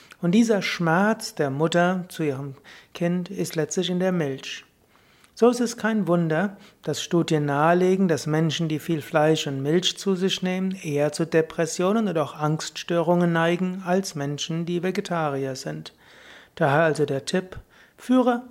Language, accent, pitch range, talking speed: German, German, 150-185 Hz, 155 wpm